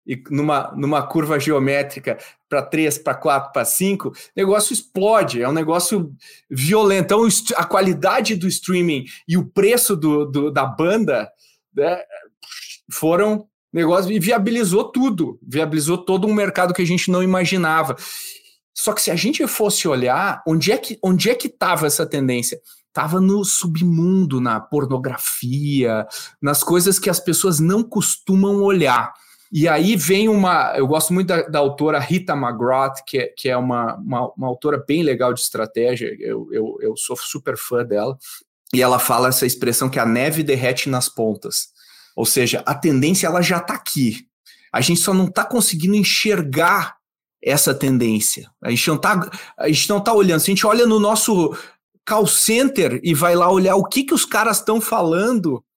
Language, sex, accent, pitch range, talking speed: Portuguese, male, Brazilian, 140-210 Hz, 165 wpm